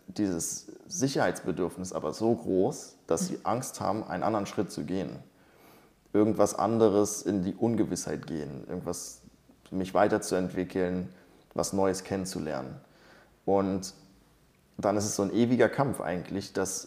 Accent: German